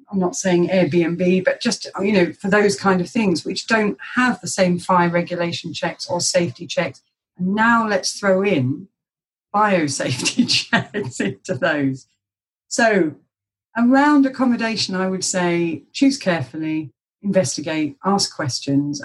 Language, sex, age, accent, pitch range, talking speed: English, female, 40-59, British, 150-195 Hz, 140 wpm